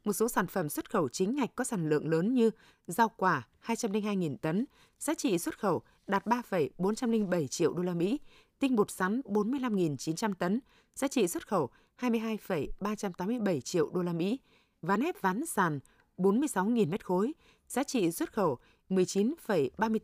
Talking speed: 160 wpm